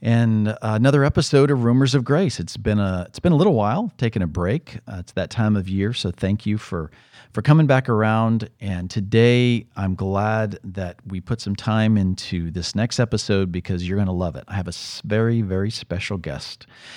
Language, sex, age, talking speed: English, male, 40-59, 205 wpm